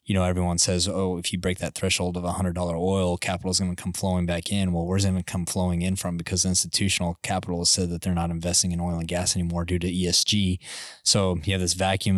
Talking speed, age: 255 wpm, 20-39